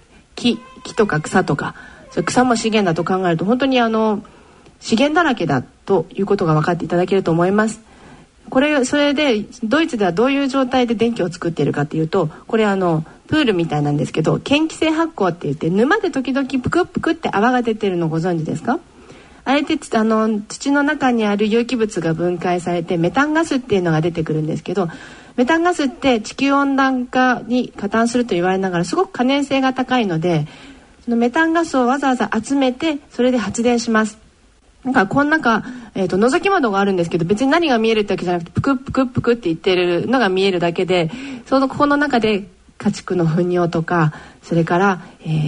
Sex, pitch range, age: female, 180-260 Hz, 40-59